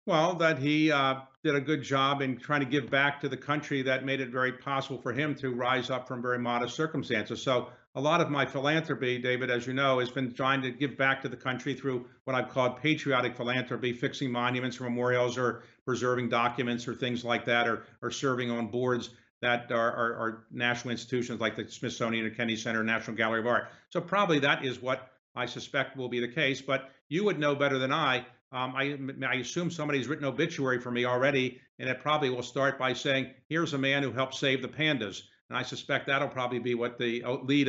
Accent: American